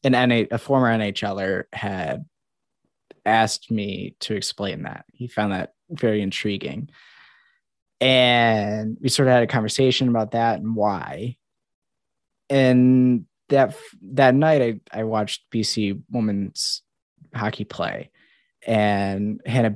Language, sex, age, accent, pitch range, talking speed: English, male, 10-29, American, 105-125 Hz, 120 wpm